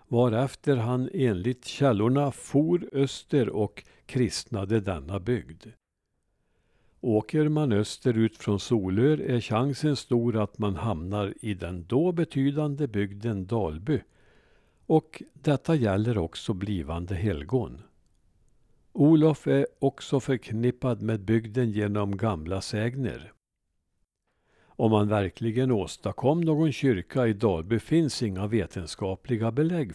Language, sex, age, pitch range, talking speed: Swedish, male, 60-79, 100-135 Hz, 110 wpm